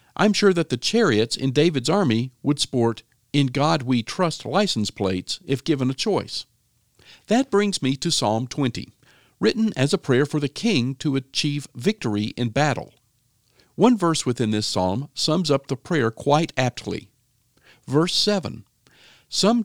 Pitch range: 115-155 Hz